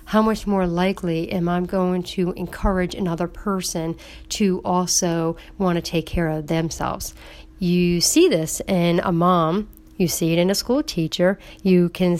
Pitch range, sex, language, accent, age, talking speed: 170-190 Hz, female, English, American, 40-59, 165 wpm